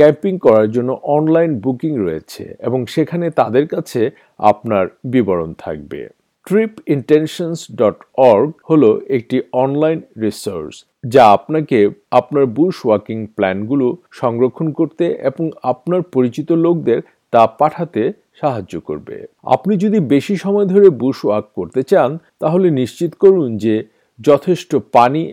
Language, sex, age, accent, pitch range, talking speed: Bengali, male, 50-69, native, 125-170 Hz, 55 wpm